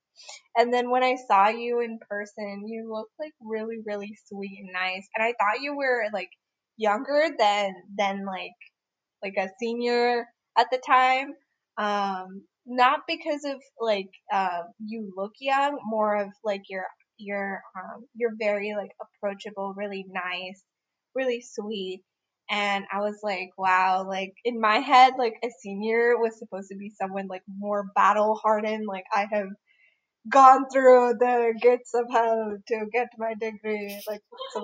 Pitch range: 200-250 Hz